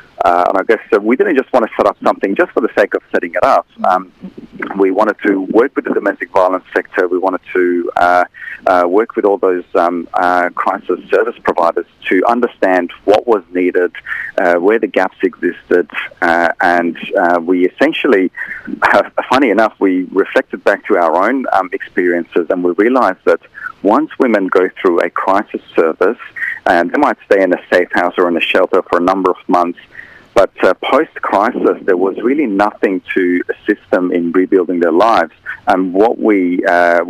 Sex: male